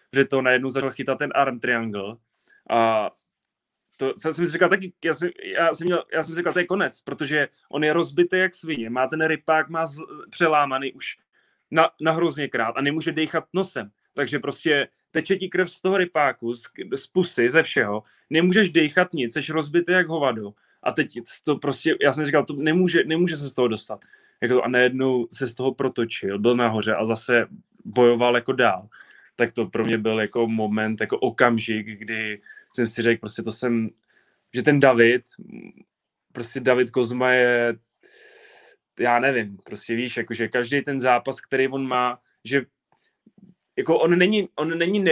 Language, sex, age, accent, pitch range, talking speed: Czech, male, 20-39, native, 115-160 Hz, 175 wpm